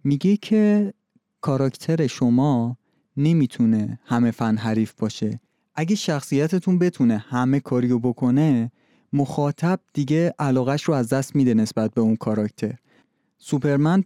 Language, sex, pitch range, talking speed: Persian, male, 115-145 Hz, 110 wpm